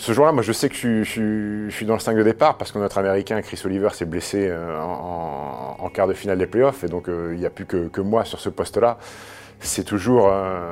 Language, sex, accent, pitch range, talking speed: French, male, French, 90-110 Hz, 225 wpm